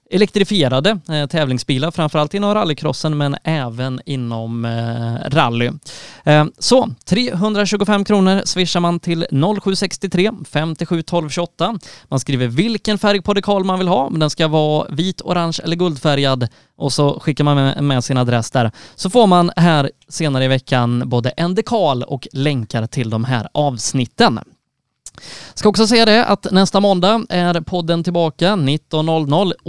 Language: Swedish